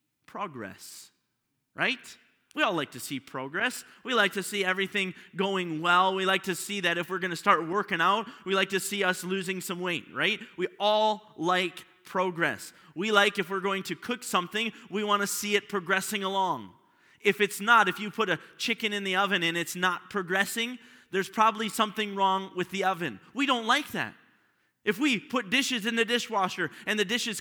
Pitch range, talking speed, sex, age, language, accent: 175-215 Hz, 200 wpm, male, 30-49, English, American